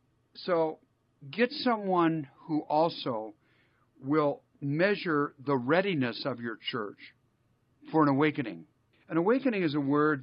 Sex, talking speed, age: male, 115 wpm, 50-69